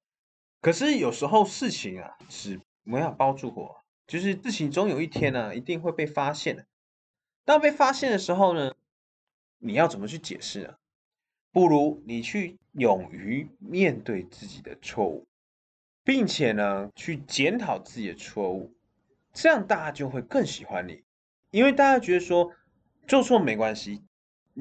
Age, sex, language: 20-39, male, Chinese